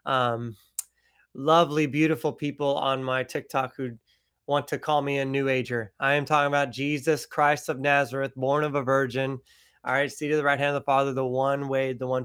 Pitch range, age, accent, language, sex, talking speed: 140-195 Hz, 30-49, American, English, male, 205 wpm